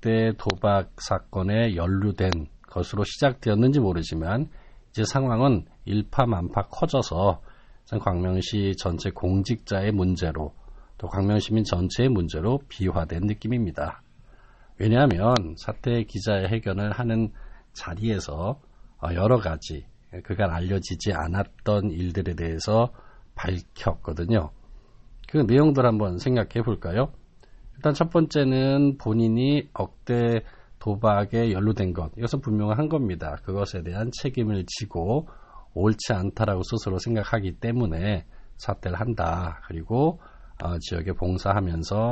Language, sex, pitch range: Korean, male, 90-120 Hz